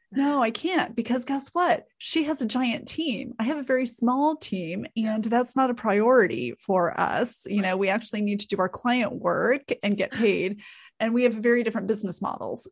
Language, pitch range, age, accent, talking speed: English, 195-240 Hz, 30-49, American, 210 wpm